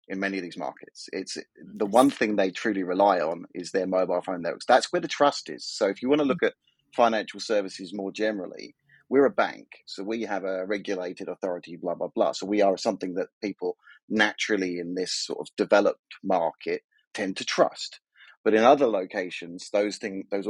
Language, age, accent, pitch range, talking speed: English, 30-49, British, 95-145 Hz, 200 wpm